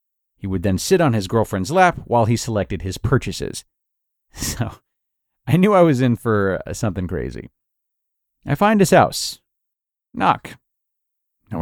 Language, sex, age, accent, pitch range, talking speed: English, male, 40-59, American, 95-140 Hz, 150 wpm